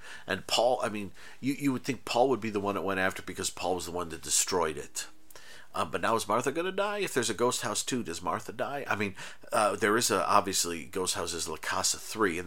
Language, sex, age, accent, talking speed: English, male, 50-69, American, 265 wpm